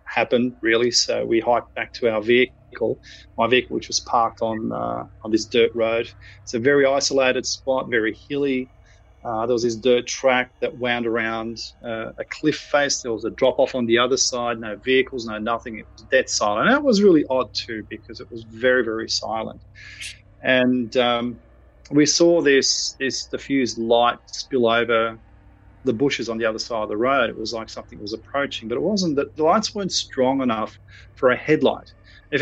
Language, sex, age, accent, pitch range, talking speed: English, male, 30-49, Australian, 110-130 Hz, 195 wpm